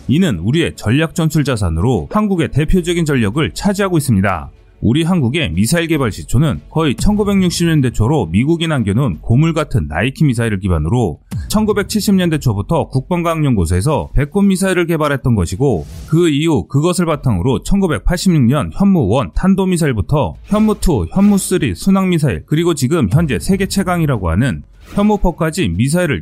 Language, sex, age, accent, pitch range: Korean, male, 30-49, native, 115-180 Hz